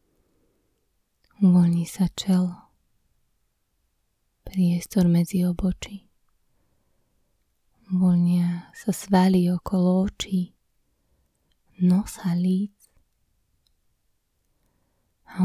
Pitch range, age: 170-195 Hz, 20-39